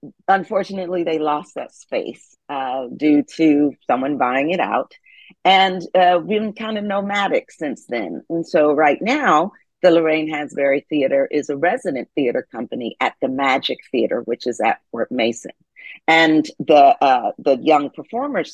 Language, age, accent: English, 50-69, American